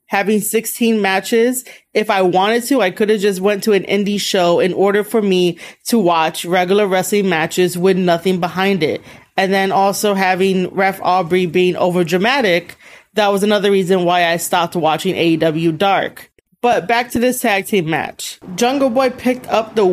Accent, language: American, English